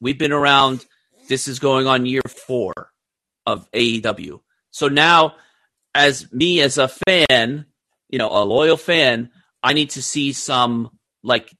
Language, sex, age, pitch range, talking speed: English, male, 30-49, 120-155 Hz, 150 wpm